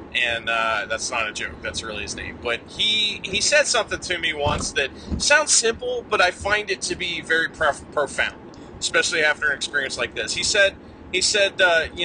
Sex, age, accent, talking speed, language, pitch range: male, 30-49, American, 210 wpm, English, 115-175 Hz